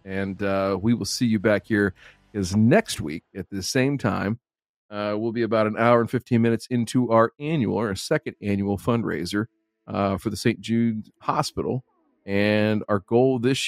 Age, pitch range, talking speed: 40-59, 100-115 Hz, 175 wpm